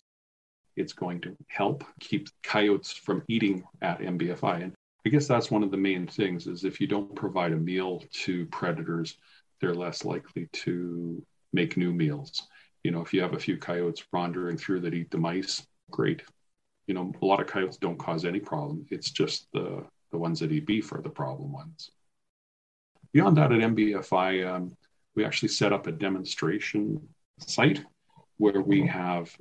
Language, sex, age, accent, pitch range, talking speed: English, male, 40-59, American, 90-110 Hz, 180 wpm